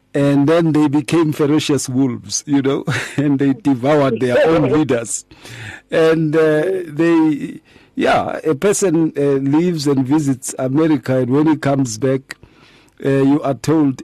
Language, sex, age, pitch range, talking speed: English, male, 50-69, 120-150 Hz, 145 wpm